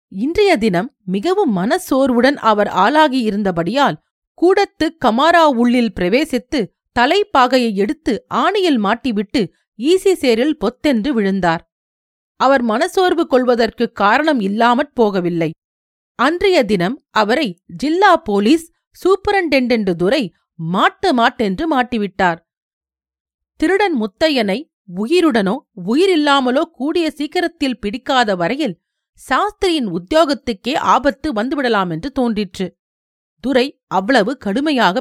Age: 40-59